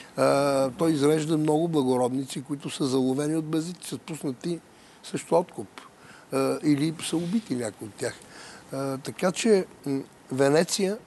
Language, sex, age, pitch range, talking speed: Bulgarian, male, 60-79, 130-160 Hz, 120 wpm